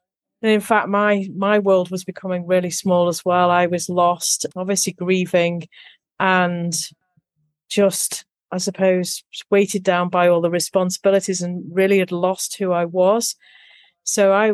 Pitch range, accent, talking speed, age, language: 175-195 Hz, British, 150 wpm, 40-59, English